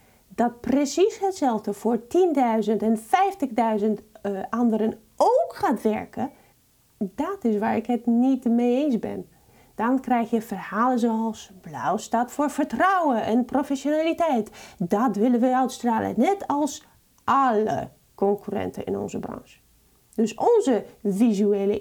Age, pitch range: 30-49, 220-270 Hz